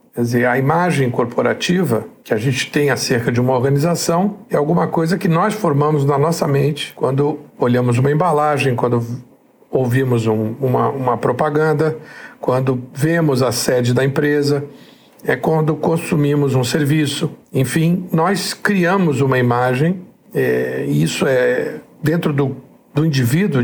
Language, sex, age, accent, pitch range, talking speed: Portuguese, male, 60-79, Brazilian, 130-170 Hz, 140 wpm